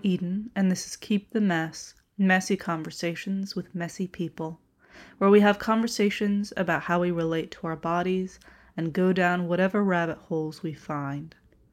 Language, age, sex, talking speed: English, 20-39, female, 160 wpm